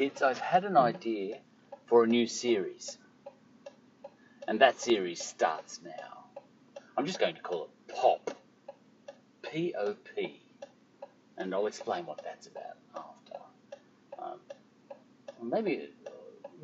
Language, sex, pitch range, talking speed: English, male, 215-280 Hz, 110 wpm